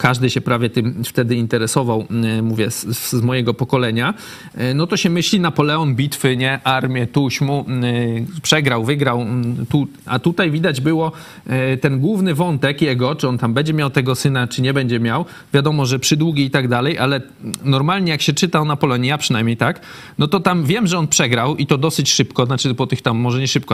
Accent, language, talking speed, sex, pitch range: native, Polish, 195 wpm, male, 125-155 Hz